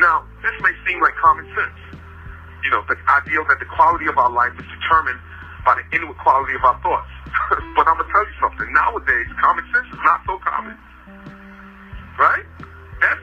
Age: 40-59